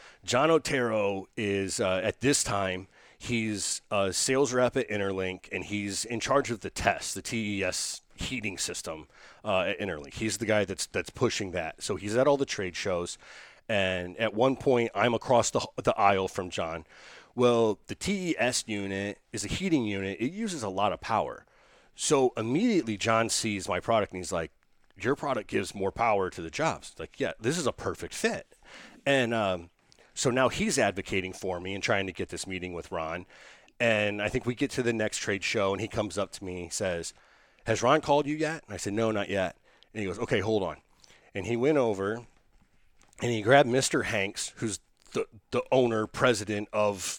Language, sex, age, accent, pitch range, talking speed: English, male, 30-49, American, 100-125 Hz, 195 wpm